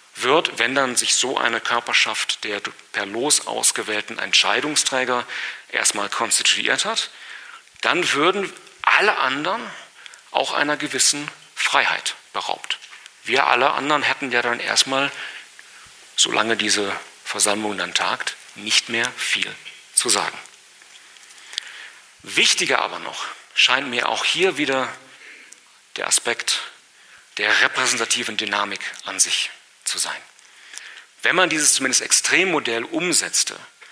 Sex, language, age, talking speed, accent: male, German, 40-59, 115 wpm, German